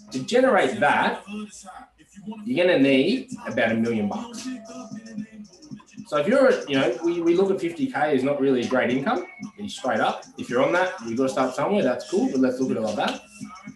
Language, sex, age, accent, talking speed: English, male, 20-39, Australian, 215 wpm